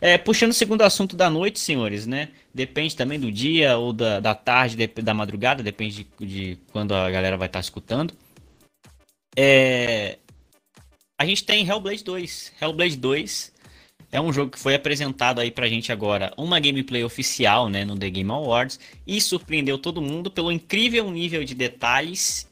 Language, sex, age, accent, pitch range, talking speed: Portuguese, male, 10-29, Brazilian, 120-165 Hz, 165 wpm